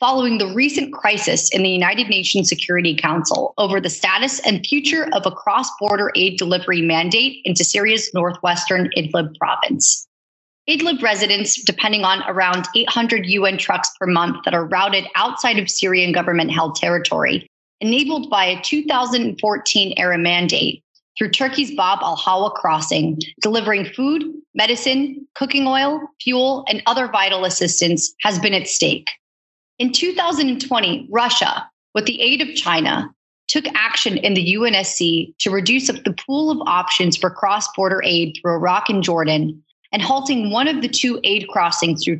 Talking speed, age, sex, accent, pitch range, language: 145 wpm, 30-49, female, American, 180-250 Hz, English